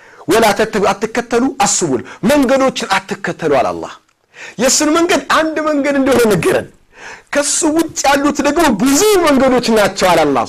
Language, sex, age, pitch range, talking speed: Amharic, male, 50-69, 190-255 Hz, 125 wpm